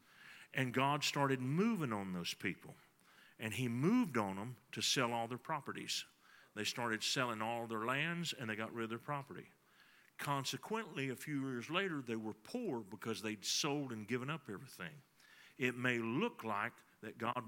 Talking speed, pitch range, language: 175 wpm, 110-140 Hz, English